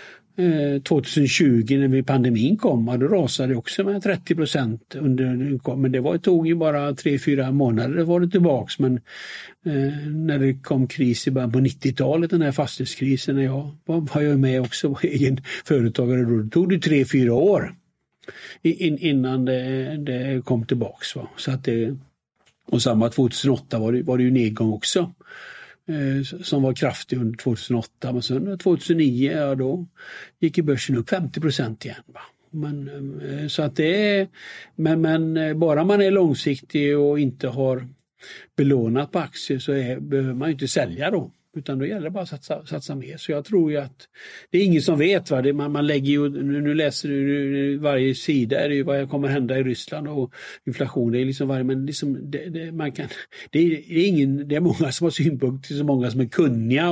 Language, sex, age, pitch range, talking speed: English, male, 60-79, 130-160 Hz, 180 wpm